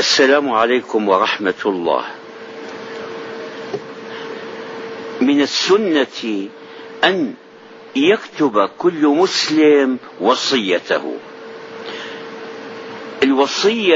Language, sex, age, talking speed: Arabic, male, 60-79, 50 wpm